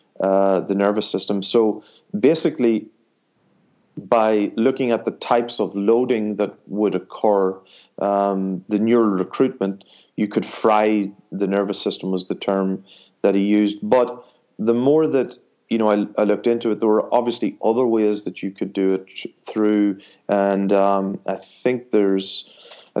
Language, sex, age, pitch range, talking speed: English, male, 30-49, 95-110 Hz, 155 wpm